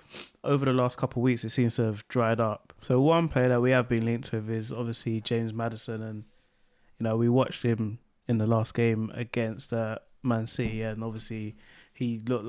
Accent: British